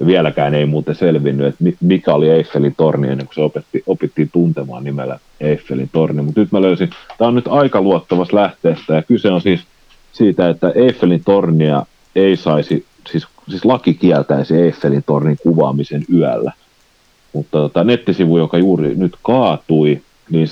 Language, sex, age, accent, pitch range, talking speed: Finnish, male, 40-59, native, 75-90 Hz, 160 wpm